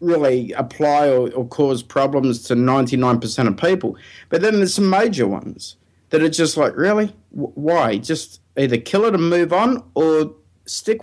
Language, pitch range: English, 120-190 Hz